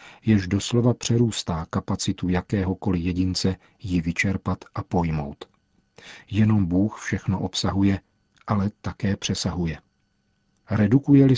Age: 40-59